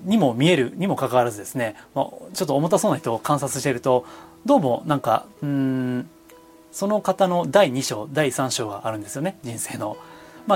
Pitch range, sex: 130-195 Hz, male